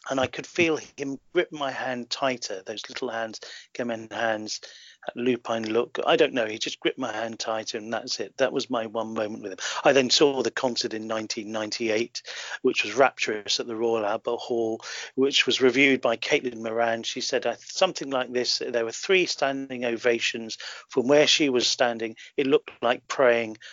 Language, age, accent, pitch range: English, 40-59, British, 115-135 Hz